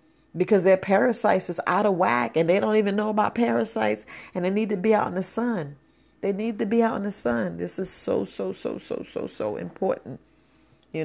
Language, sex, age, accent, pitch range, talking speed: English, female, 40-59, American, 155-200 Hz, 225 wpm